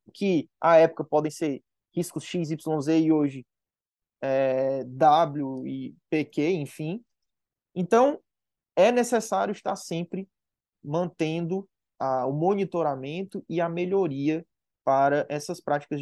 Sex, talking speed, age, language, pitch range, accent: male, 110 wpm, 20-39, Portuguese, 140-175 Hz, Brazilian